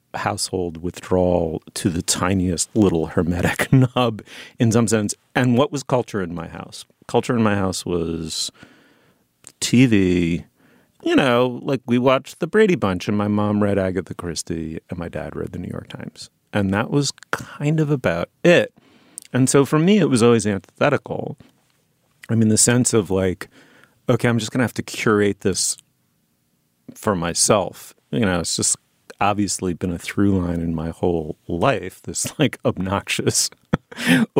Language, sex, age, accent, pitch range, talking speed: English, male, 40-59, American, 85-120 Hz, 165 wpm